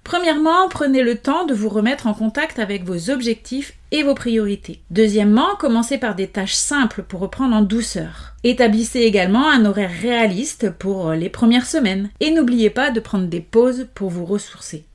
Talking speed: 175 wpm